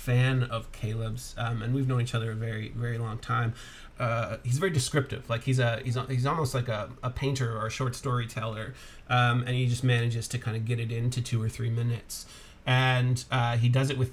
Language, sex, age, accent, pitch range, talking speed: English, male, 30-49, American, 115-130 Hz, 225 wpm